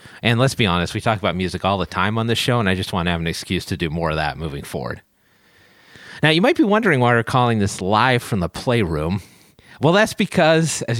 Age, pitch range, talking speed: 40-59, 90-130 Hz, 250 wpm